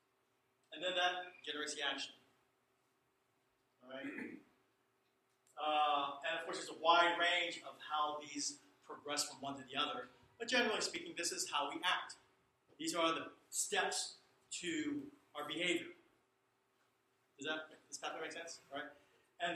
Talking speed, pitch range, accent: 140 wpm, 145-230 Hz, American